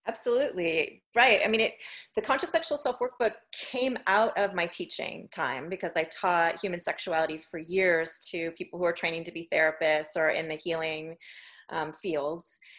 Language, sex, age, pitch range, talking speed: English, female, 30-49, 165-215 Hz, 170 wpm